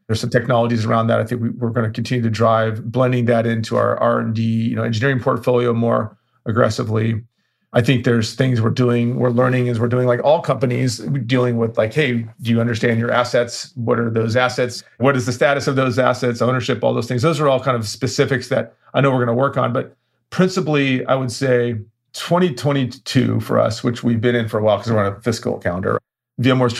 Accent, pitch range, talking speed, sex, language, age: American, 115-130 Hz, 220 wpm, male, English, 40-59